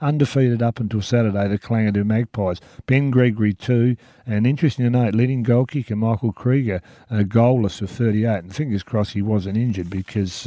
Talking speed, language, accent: 180 wpm, English, Australian